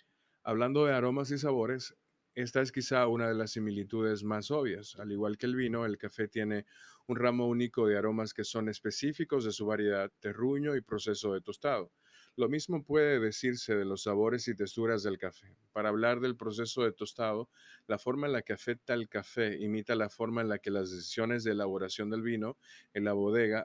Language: Spanish